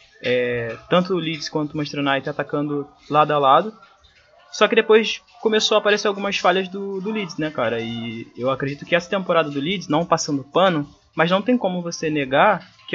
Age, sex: 20-39, male